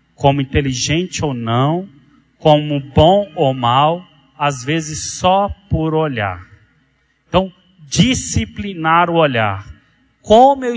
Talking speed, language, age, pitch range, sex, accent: 105 wpm, Portuguese, 40-59, 125-165 Hz, male, Brazilian